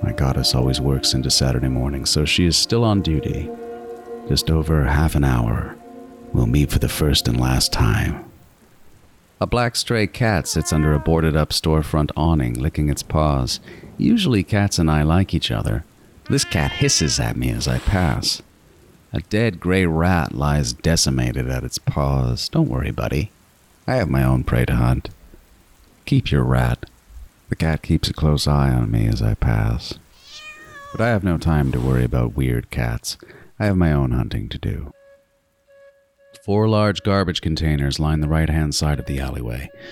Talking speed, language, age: 175 wpm, English, 40-59